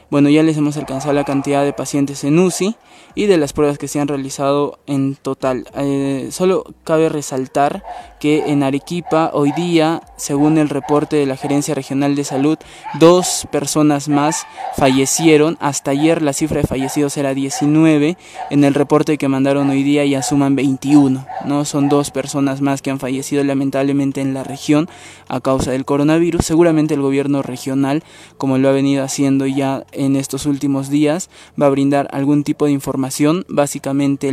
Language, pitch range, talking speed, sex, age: Spanish, 135-150 Hz, 170 wpm, male, 20-39